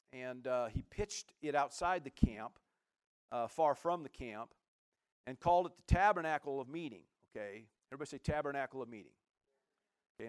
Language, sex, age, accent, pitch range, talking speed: English, male, 50-69, American, 140-195 Hz, 155 wpm